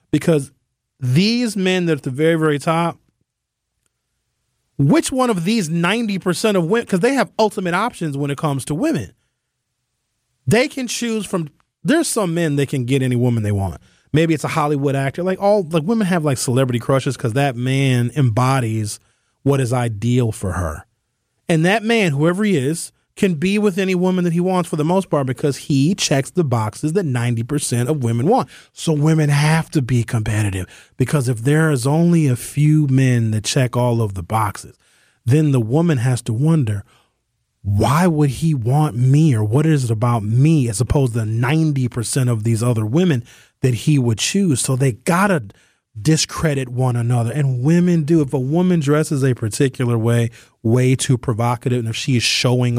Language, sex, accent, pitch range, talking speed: English, male, American, 120-165 Hz, 190 wpm